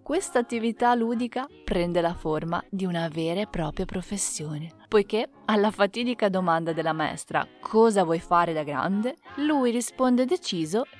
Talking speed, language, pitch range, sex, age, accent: 140 wpm, Italian, 175-230 Hz, female, 20-39, native